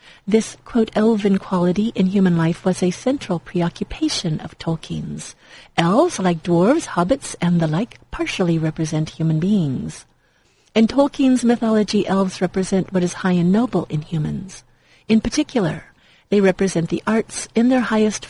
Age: 50-69